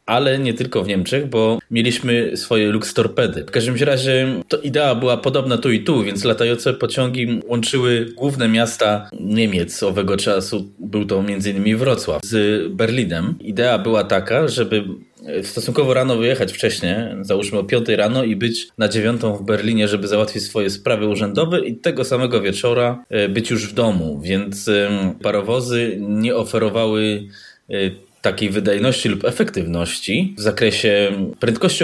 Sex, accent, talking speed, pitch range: male, native, 145 wpm, 105-120 Hz